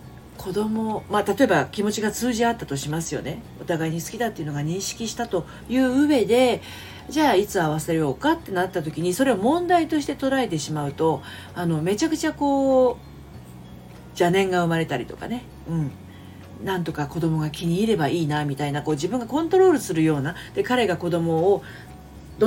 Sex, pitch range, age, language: female, 155-245 Hz, 40-59, Japanese